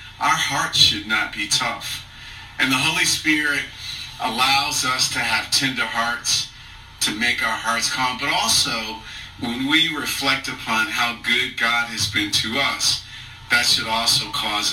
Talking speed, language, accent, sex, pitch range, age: 155 wpm, English, American, male, 110-140 Hz, 40-59